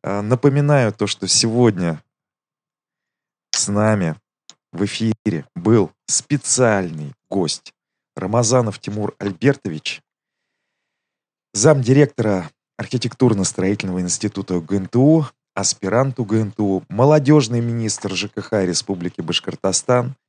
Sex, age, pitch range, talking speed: male, 30-49, 100-125 Hz, 75 wpm